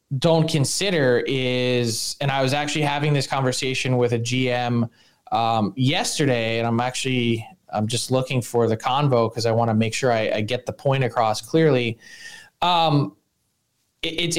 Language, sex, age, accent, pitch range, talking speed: English, male, 20-39, American, 125-170 Hz, 165 wpm